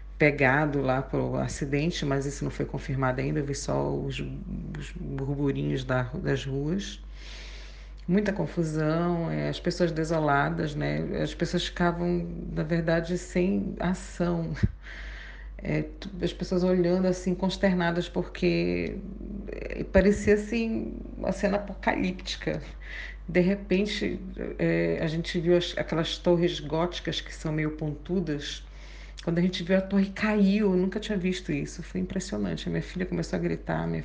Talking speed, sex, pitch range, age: 145 wpm, female, 135-175 Hz, 40-59